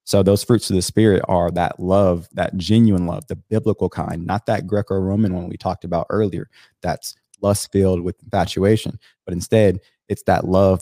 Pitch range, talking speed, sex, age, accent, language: 90-110 Hz, 185 wpm, male, 20-39, American, English